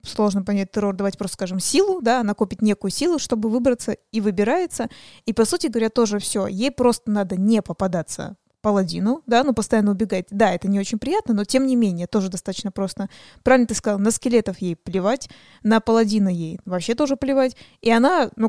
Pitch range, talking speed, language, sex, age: 200-240 Hz, 190 wpm, Russian, female, 20-39